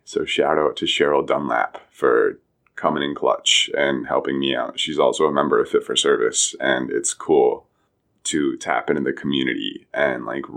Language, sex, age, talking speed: English, male, 20-39, 180 wpm